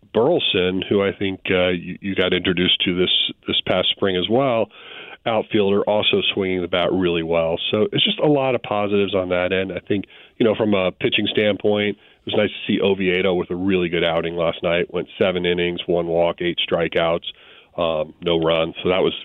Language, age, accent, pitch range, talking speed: English, 40-59, American, 90-105 Hz, 210 wpm